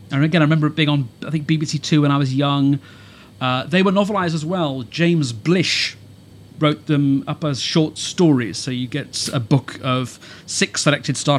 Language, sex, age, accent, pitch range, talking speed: English, male, 40-59, British, 125-155 Hz, 200 wpm